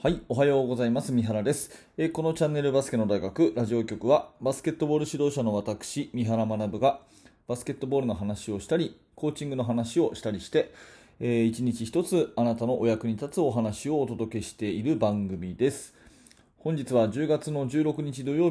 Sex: male